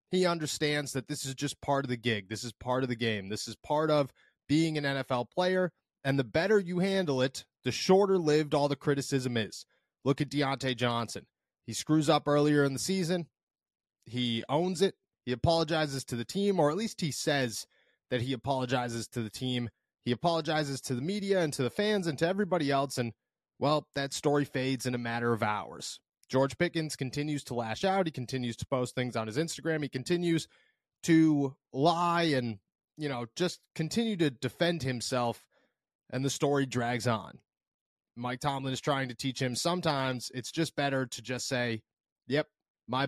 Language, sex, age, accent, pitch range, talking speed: English, male, 30-49, American, 125-160 Hz, 190 wpm